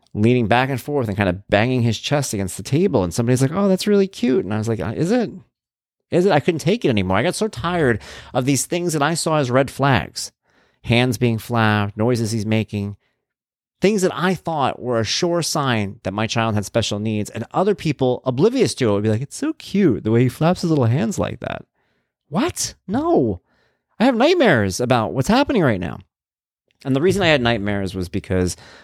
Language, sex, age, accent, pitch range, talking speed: English, male, 30-49, American, 105-145 Hz, 220 wpm